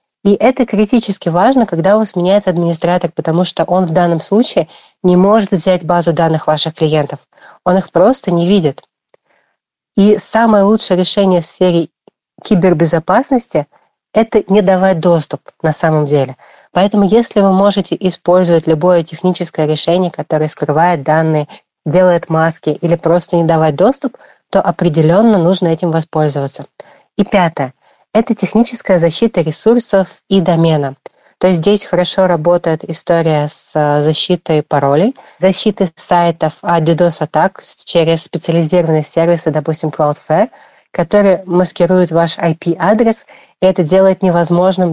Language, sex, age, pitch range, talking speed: Russian, female, 30-49, 165-195 Hz, 130 wpm